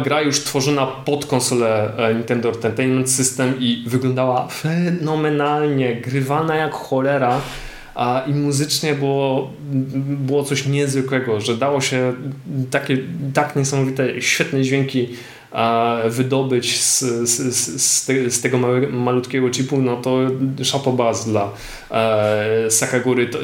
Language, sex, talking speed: Polish, male, 110 wpm